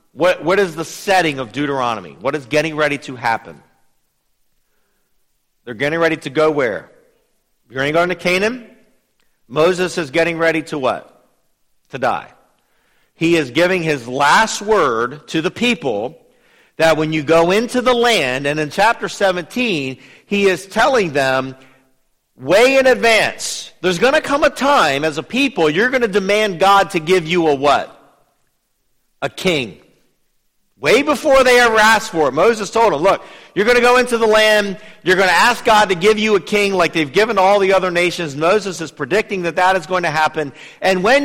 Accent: American